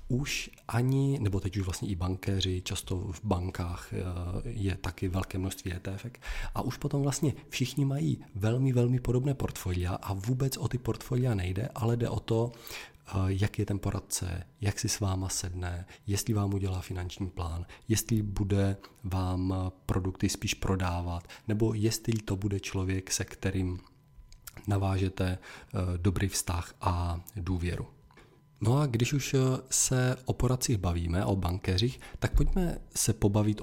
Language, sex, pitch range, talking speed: Czech, male, 95-115 Hz, 145 wpm